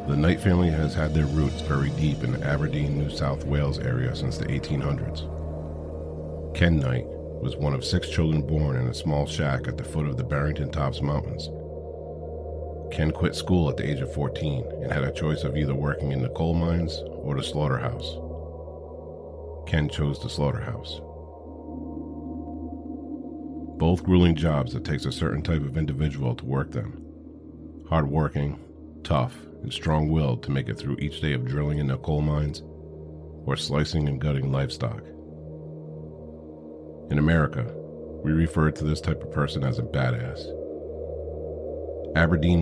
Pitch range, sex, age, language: 70-80 Hz, male, 50-69, English